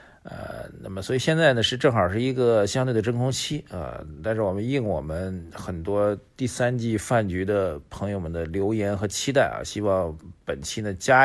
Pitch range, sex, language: 90-115 Hz, male, Chinese